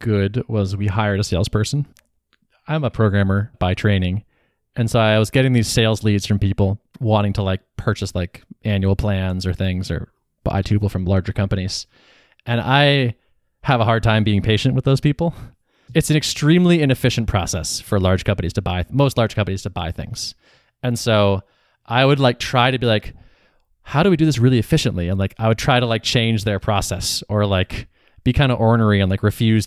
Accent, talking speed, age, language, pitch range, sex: American, 200 wpm, 20-39, English, 100-125 Hz, male